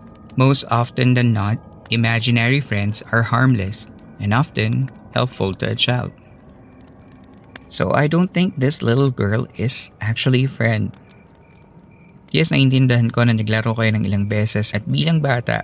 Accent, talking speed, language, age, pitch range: native, 140 wpm, Filipino, 20-39, 105-130 Hz